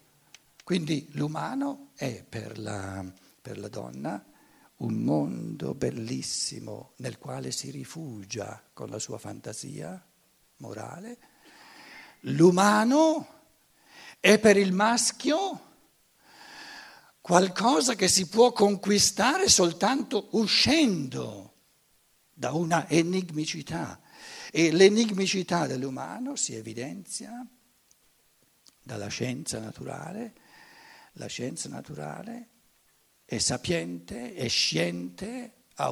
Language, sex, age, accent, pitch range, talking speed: Italian, male, 60-79, native, 155-235 Hz, 85 wpm